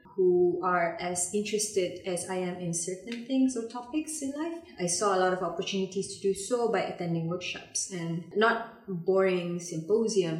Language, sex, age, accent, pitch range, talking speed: English, female, 20-39, Malaysian, 180-215 Hz, 175 wpm